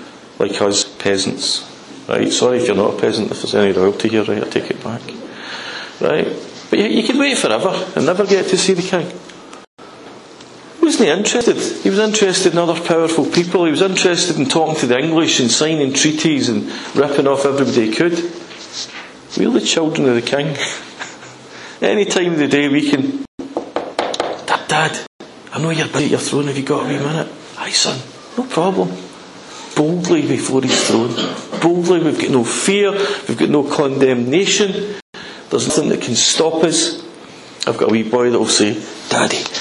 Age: 40-59